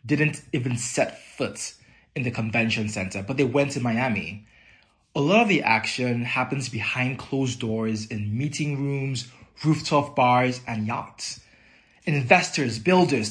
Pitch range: 115-155 Hz